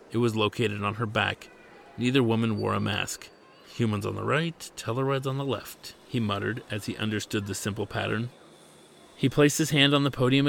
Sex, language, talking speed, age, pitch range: male, English, 195 wpm, 40-59, 105-125 Hz